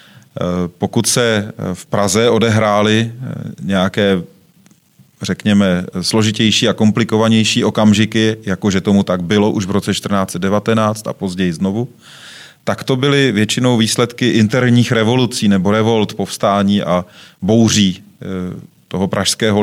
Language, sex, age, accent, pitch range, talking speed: Czech, male, 30-49, native, 95-110 Hz, 110 wpm